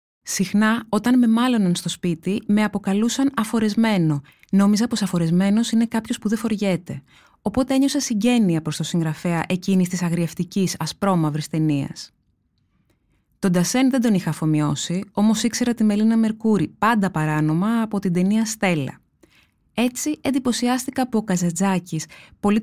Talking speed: 135 wpm